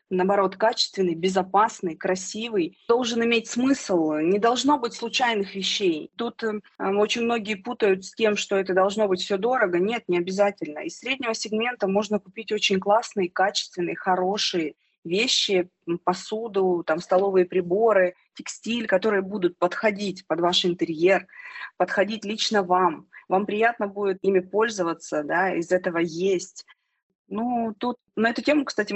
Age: 20-39